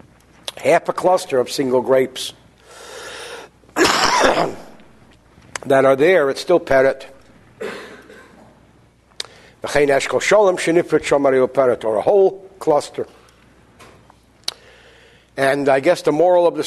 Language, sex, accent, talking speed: English, male, American, 85 wpm